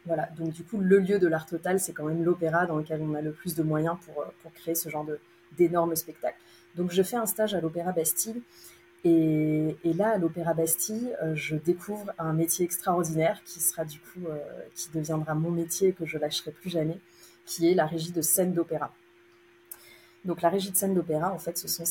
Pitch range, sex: 155-180 Hz, female